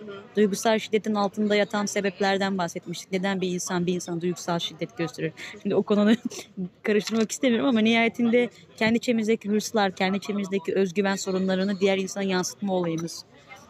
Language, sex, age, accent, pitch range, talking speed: Turkish, female, 30-49, native, 190-225 Hz, 140 wpm